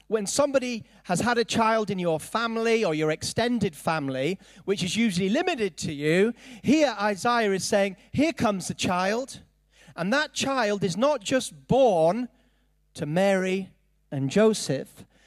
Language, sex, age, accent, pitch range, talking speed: English, male, 40-59, British, 170-240 Hz, 150 wpm